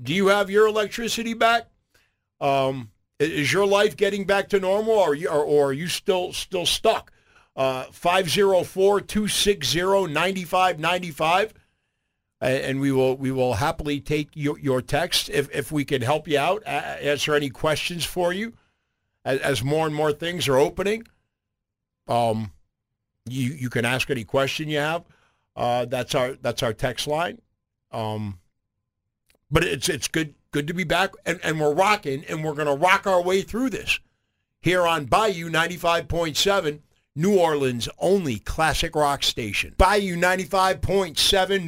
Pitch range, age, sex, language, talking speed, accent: 130-190 Hz, 50-69, male, English, 160 wpm, American